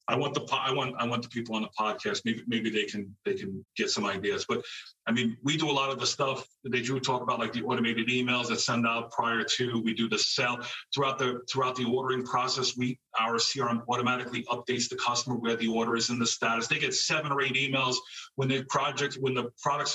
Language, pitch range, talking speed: English, 120-140 Hz, 245 wpm